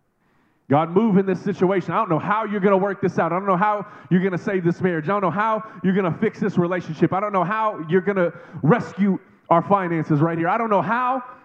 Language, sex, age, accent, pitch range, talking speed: English, male, 30-49, American, 155-200 Hz, 265 wpm